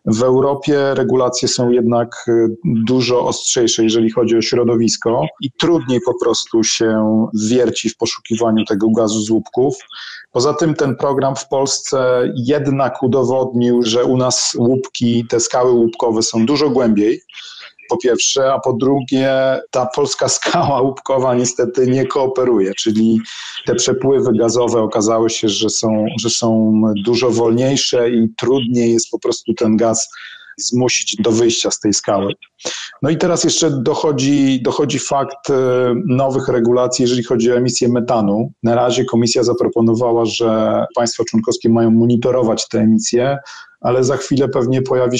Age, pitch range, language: 40-59, 115-125 Hz, Polish